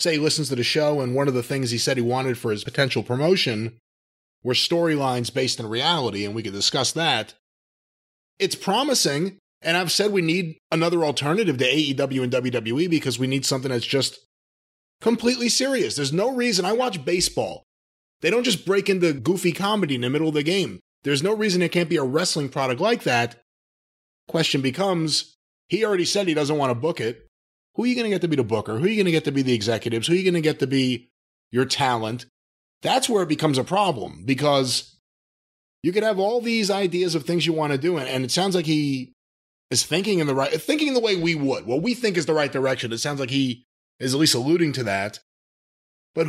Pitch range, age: 125-180 Hz, 30-49